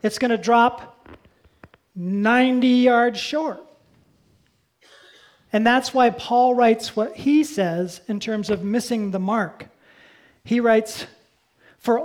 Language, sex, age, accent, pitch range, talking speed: English, male, 40-59, American, 210-275 Hz, 120 wpm